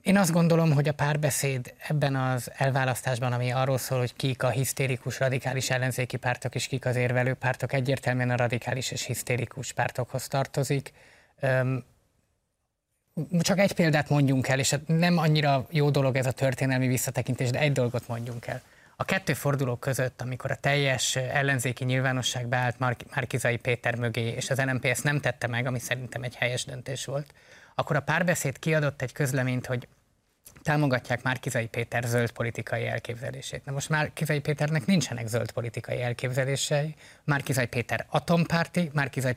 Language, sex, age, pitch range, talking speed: Hungarian, male, 20-39, 120-140 Hz, 155 wpm